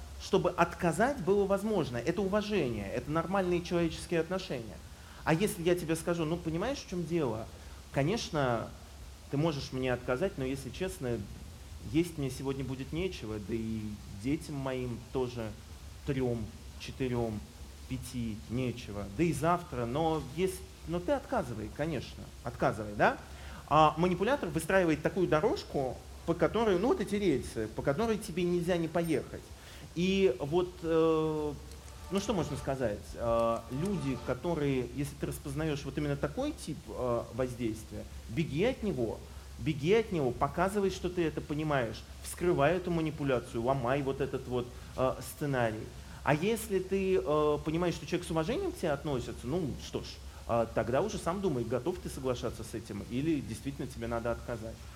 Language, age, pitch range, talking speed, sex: Russian, 30-49, 115-175 Hz, 145 wpm, male